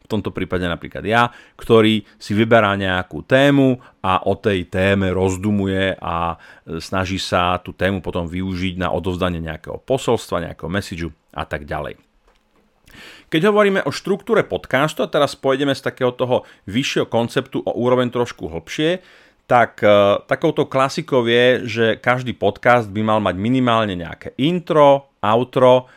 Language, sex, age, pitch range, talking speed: Slovak, male, 40-59, 90-125 Hz, 145 wpm